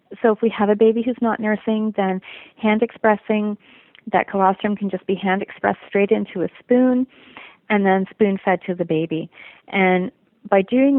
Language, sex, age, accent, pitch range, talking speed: English, female, 30-49, American, 180-215 Hz, 165 wpm